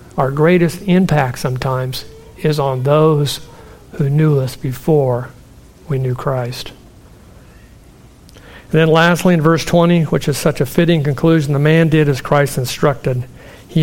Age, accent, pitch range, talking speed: 60-79, American, 130-160 Hz, 145 wpm